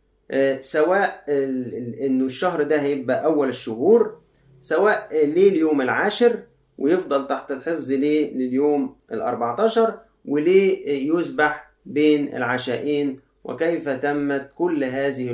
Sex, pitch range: male, 125-155 Hz